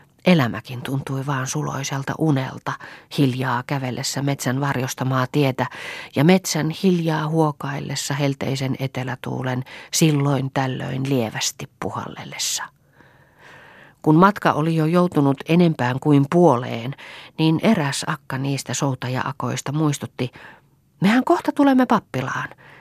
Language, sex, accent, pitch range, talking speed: Finnish, female, native, 130-165 Hz, 100 wpm